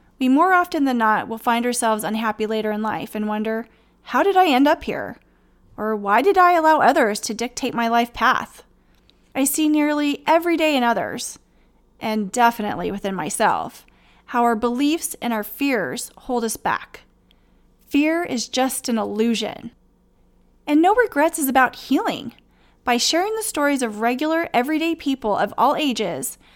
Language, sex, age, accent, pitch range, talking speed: English, female, 30-49, American, 220-300 Hz, 165 wpm